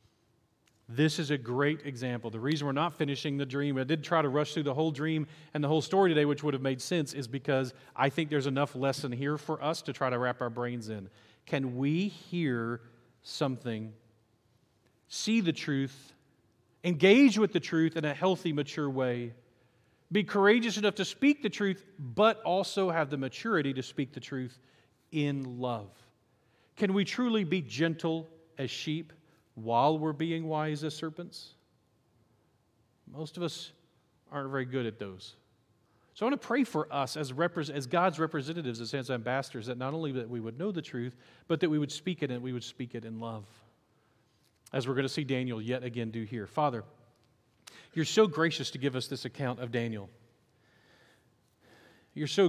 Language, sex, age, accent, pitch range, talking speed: English, male, 40-59, American, 120-160 Hz, 185 wpm